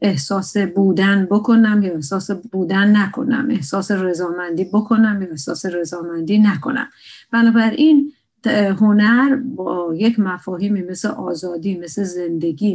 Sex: female